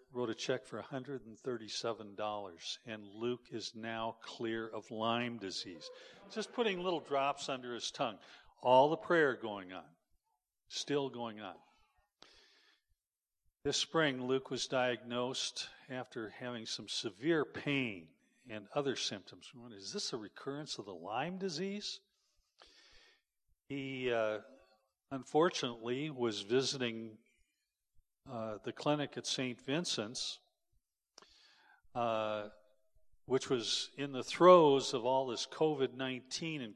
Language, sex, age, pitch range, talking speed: English, male, 50-69, 115-150 Hz, 115 wpm